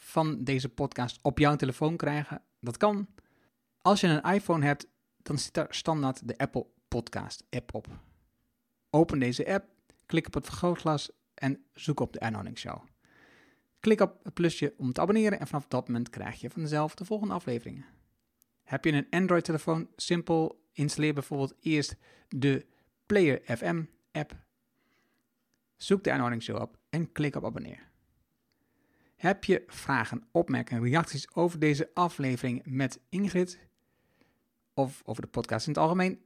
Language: Dutch